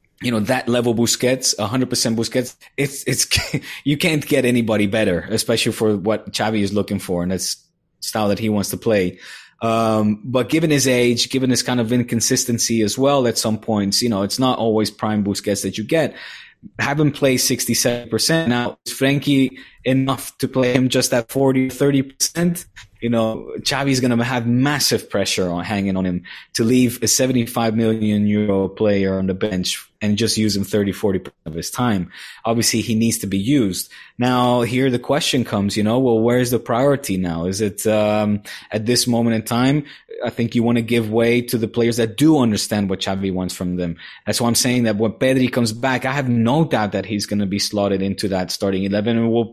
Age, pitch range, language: 20-39, 105-130 Hz, English